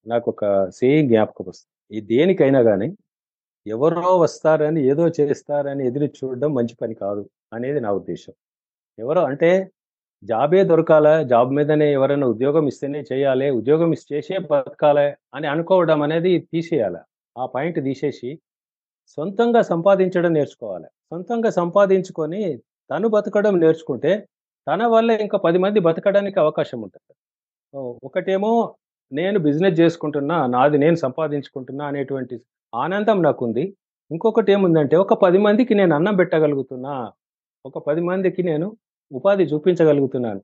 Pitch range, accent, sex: 130-180 Hz, native, male